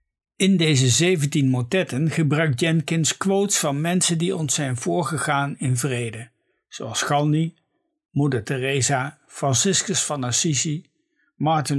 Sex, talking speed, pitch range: male, 115 wpm, 130-170 Hz